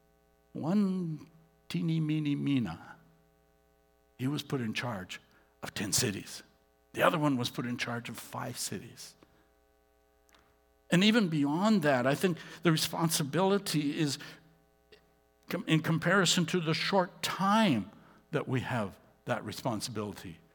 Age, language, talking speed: 60-79, English, 125 wpm